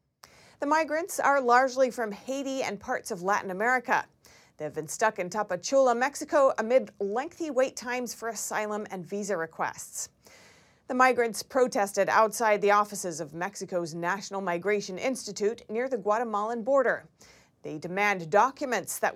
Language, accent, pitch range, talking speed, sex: English, American, 185-250 Hz, 140 wpm, female